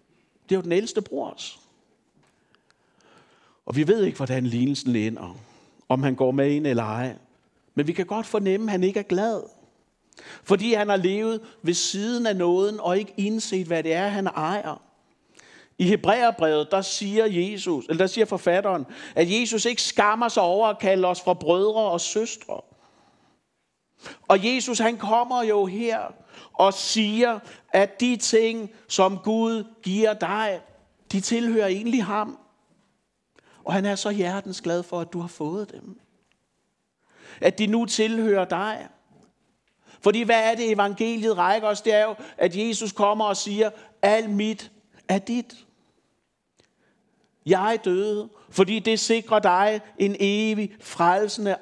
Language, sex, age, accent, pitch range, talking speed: Danish, male, 60-79, native, 185-220 Hz, 150 wpm